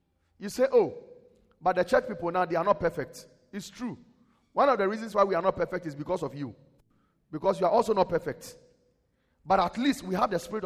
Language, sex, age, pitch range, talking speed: English, male, 40-59, 145-205 Hz, 225 wpm